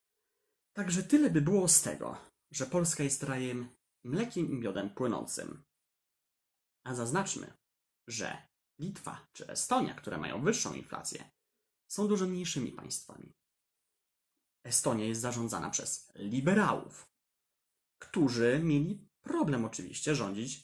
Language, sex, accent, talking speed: Polish, male, native, 110 wpm